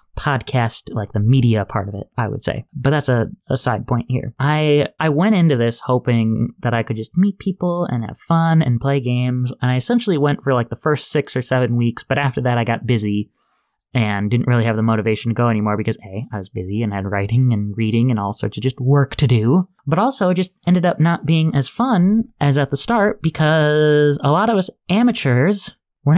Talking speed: 230 wpm